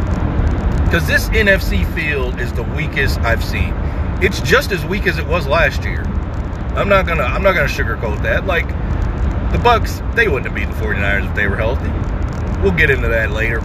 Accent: American